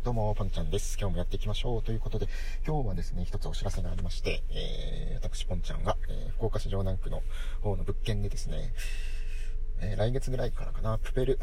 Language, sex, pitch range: Japanese, male, 90-115 Hz